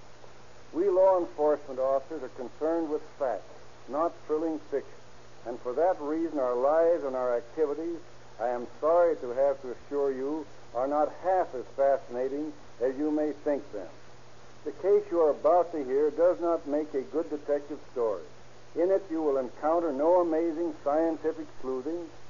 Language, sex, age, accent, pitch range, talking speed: English, male, 60-79, American, 135-170 Hz, 165 wpm